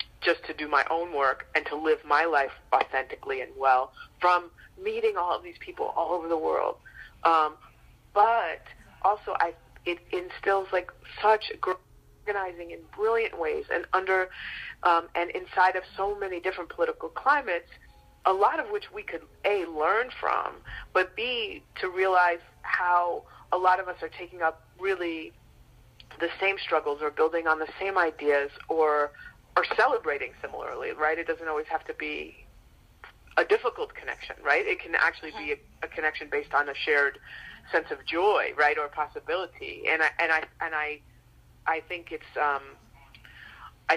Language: English